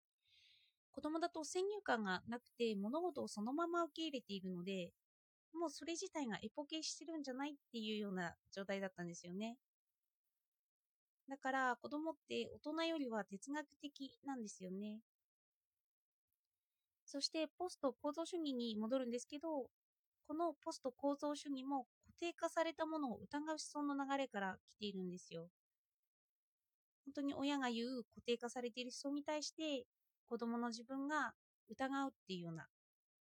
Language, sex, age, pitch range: Japanese, female, 20-39, 220-315 Hz